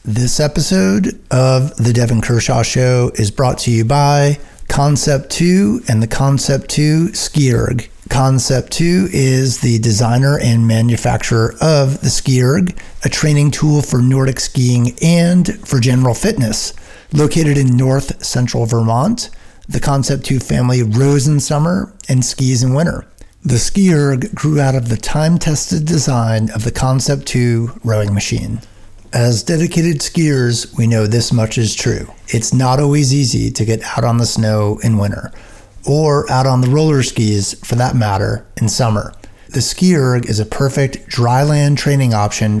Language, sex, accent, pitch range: English, male, American, 115-145 Hz